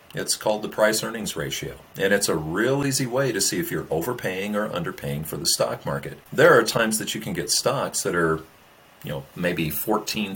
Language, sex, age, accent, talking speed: English, male, 40-59, American, 215 wpm